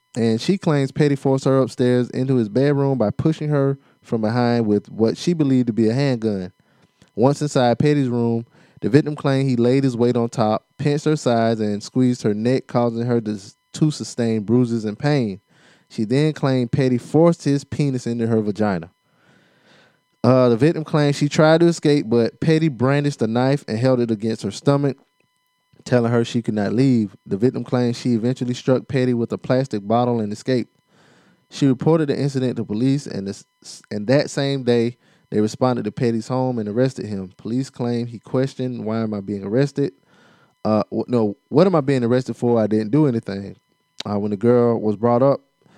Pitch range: 115-140 Hz